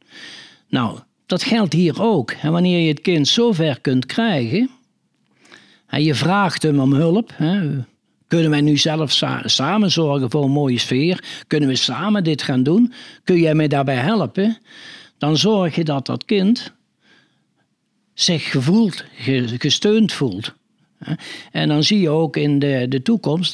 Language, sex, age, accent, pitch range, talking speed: Dutch, male, 60-79, Dutch, 130-175 Hz, 150 wpm